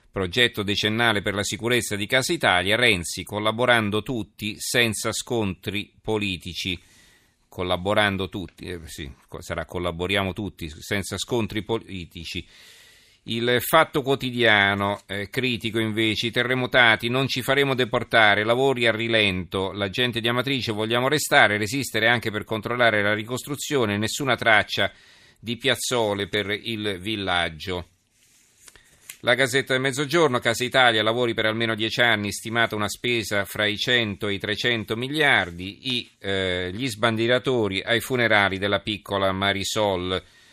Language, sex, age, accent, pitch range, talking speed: Italian, male, 40-59, native, 100-120 Hz, 130 wpm